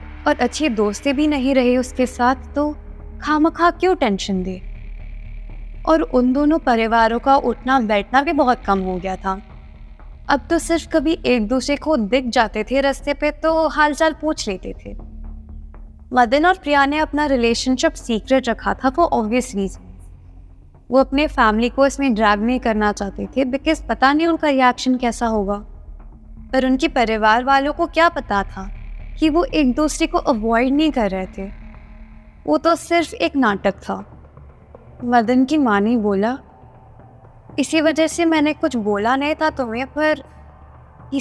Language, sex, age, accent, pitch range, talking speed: Hindi, female, 20-39, native, 200-295 Hz, 165 wpm